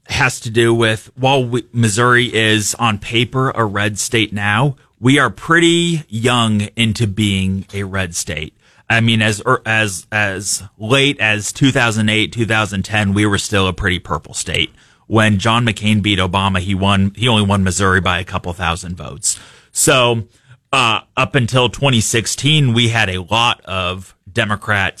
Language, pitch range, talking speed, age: English, 100-120 Hz, 160 wpm, 30-49